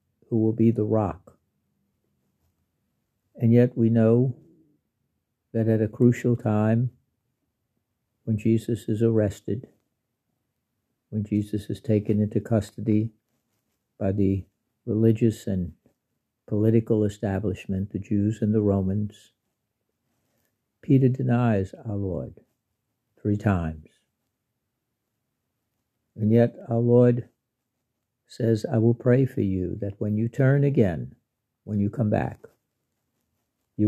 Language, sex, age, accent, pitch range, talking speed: English, male, 60-79, American, 105-120 Hz, 110 wpm